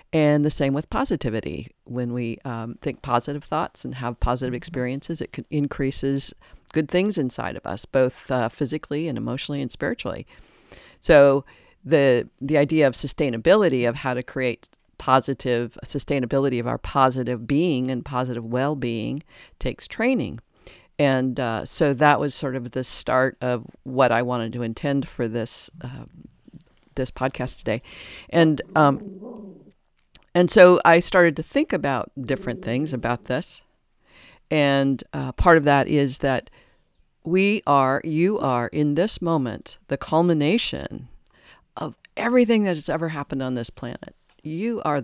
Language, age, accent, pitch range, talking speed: English, 50-69, American, 125-160 Hz, 150 wpm